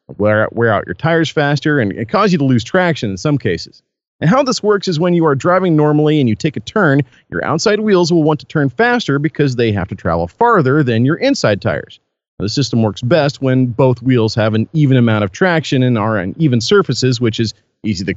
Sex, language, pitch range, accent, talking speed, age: male, English, 110-170 Hz, American, 230 wpm, 40-59